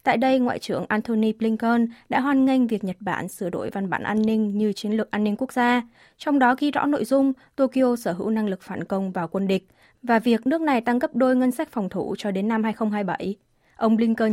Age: 20-39